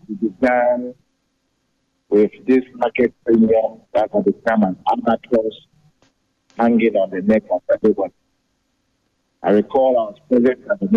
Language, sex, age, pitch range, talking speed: English, male, 50-69, 115-155 Hz, 120 wpm